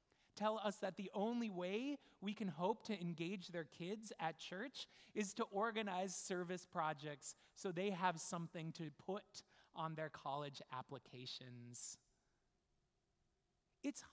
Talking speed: 130 wpm